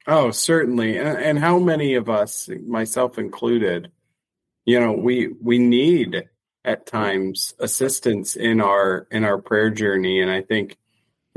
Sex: male